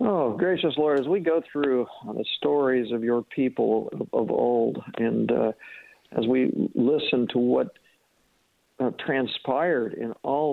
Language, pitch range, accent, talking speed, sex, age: English, 125-145 Hz, American, 155 wpm, male, 50-69